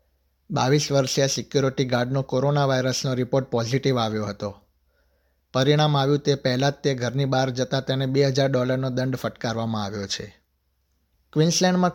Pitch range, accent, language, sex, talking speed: 110-140 Hz, native, Gujarati, male, 135 wpm